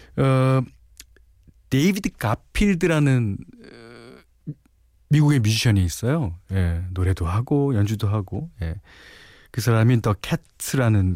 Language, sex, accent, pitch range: Korean, male, native, 95-140 Hz